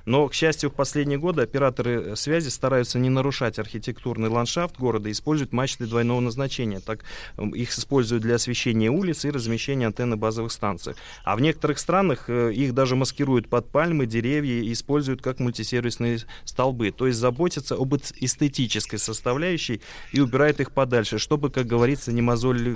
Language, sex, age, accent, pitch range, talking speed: Russian, male, 20-39, native, 115-140 Hz, 160 wpm